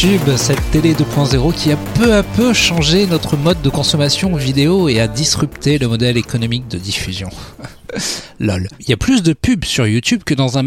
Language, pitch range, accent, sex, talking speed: French, 115-160 Hz, French, male, 190 wpm